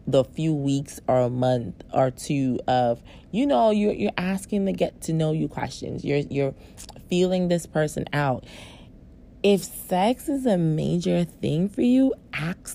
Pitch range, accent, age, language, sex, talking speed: 140-185 Hz, American, 30-49, English, female, 165 wpm